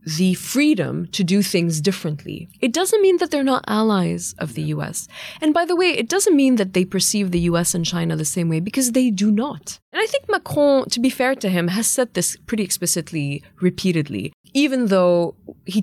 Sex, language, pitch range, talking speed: female, English, 155-210 Hz, 210 wpm